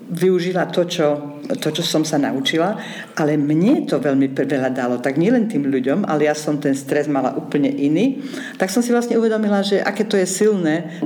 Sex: female